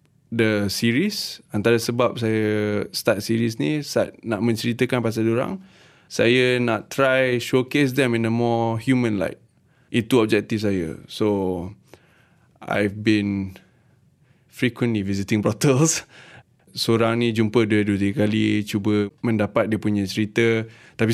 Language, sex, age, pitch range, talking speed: English, male, 20-39, 105-120 Hz, 125 wpm